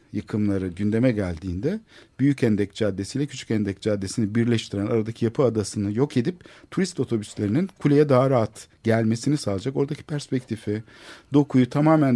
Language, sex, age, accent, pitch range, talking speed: Turkish, male, 50-69, native, 105-145 Hz, 135 wpm